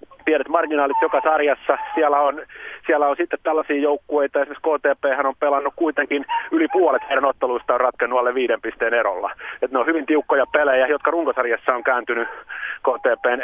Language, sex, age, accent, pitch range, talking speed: Finnish, male, 30-49, native, 135-155 Hz, 160 wpm